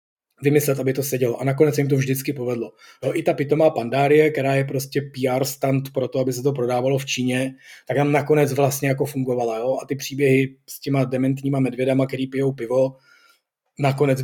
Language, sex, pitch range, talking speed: Czech, male, 125-140 Hz, 195 wpm